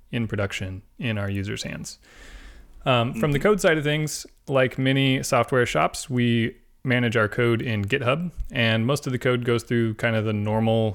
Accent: American